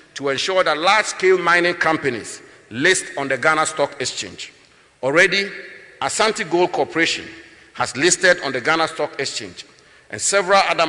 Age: 50-69